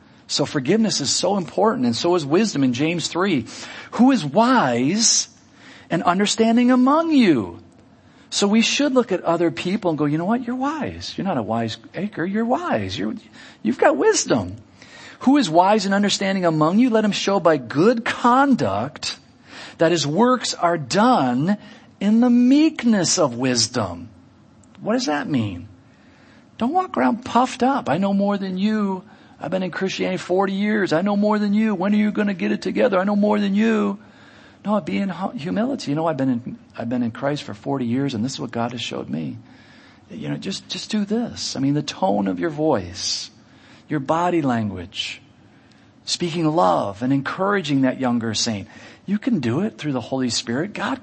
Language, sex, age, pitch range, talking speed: English, male, 40-59, 135-215 Hz, 190 wpm